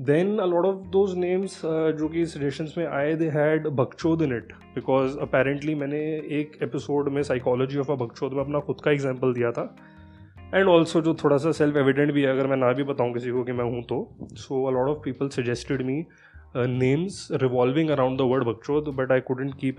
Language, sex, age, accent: Hindi, male, 20-39, native